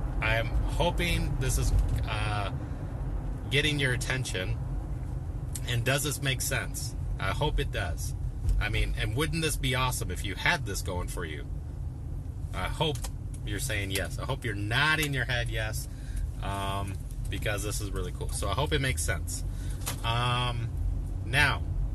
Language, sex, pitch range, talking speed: English, male, 100-130 Hz, 155 wpm